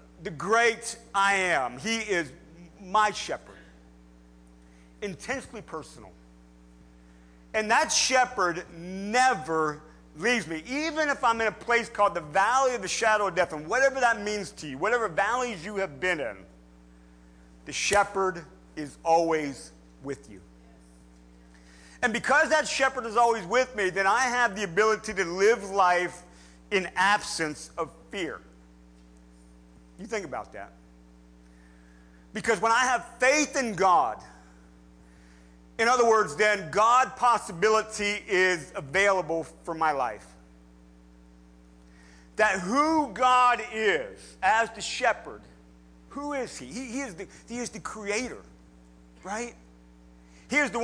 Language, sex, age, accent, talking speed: English, male, 50-69, American, 130 wpm